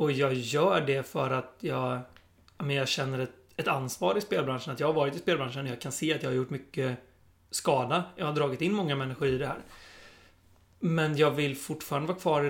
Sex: male